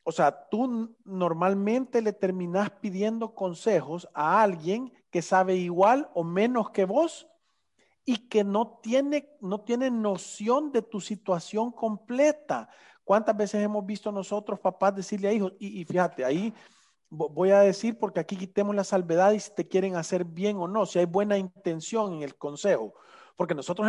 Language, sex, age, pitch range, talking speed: Spanish, male, 40-59, 165-215 Hz, 165 wpm